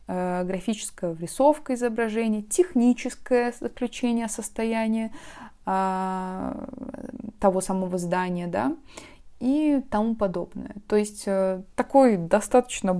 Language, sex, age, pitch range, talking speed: Russian, female, 20-39, 185-240 Hz, 85 wpm